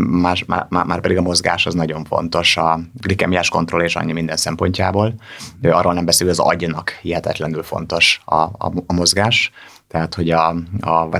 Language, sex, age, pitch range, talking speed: Hungarian, male, 30-49, 85-95 Hz, 165 wpm